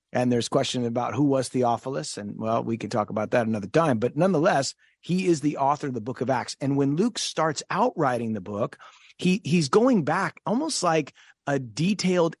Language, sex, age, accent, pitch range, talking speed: English, male, 30-49, American, 130-175 Hz, 210 wpm